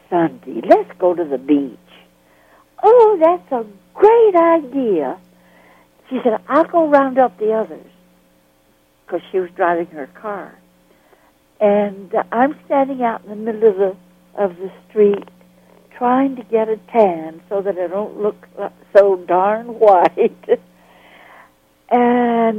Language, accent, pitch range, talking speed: English, American, 175-295 Hz, 140 wpm